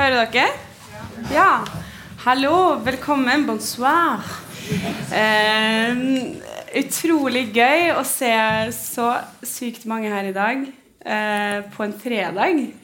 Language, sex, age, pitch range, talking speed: English, female, 20-39, 215-275 Hz, 115 wpm